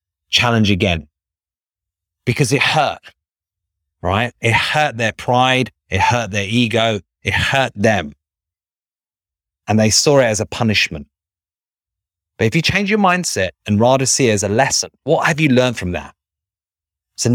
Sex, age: male, 30-49